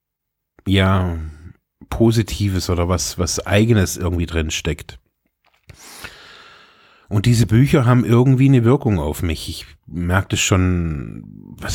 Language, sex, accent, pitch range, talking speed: German, male, German, 85-105 Hz, 115 wpm